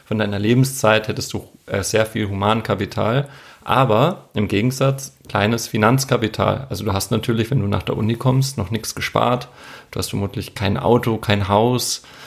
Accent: German